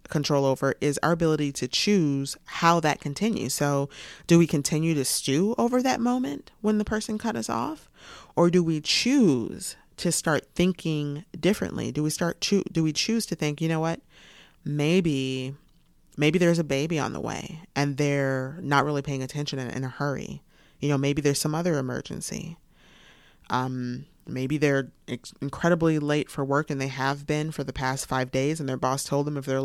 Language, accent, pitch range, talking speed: English, American, 140-170 Hz, 190 wpm